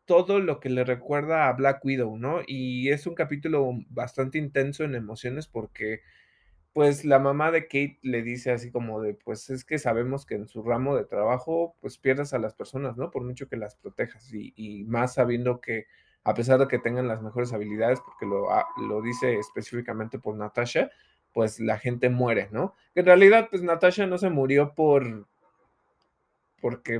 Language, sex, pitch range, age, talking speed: Spanish, male, 115-140 Hz, 20-39, 185 wpm